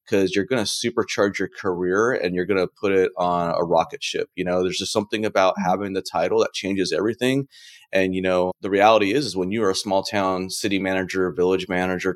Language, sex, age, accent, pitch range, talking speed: English, male, 30-49, American, 90-100 Hz, 225 wpm